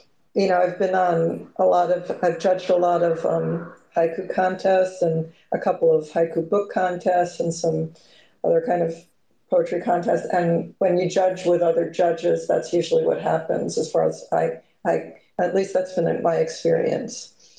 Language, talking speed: English, 175 wpm